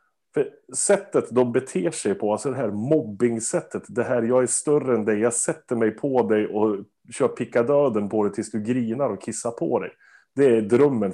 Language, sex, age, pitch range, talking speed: Swedish, male, 30-49, 105-130 Hz, 200 wpm